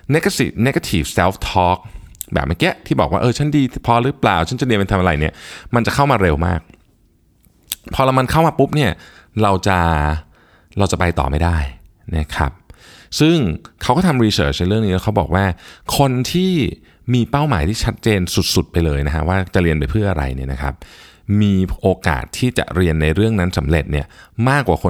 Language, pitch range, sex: Thai, 85-115 Hz, male